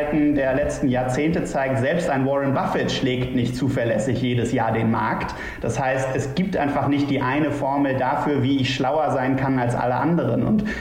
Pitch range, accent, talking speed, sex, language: 130-155 Hz, German, 190 wpm, male, German